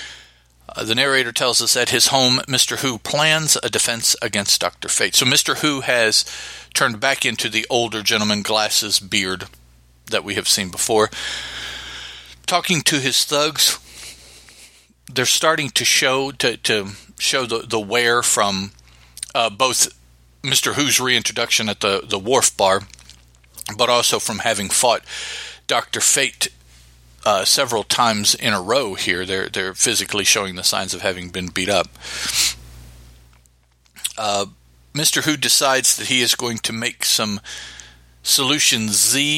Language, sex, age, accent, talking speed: English, male, 50-69, American, 145 wpm